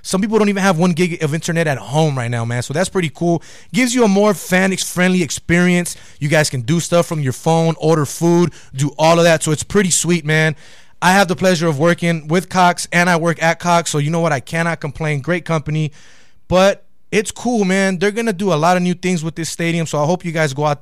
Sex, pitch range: male, 145-170 Hz